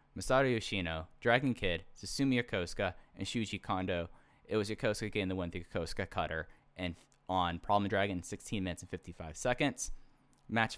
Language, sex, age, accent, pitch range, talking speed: English, male, 10-29, American, 90-115 Hz, 160 wpm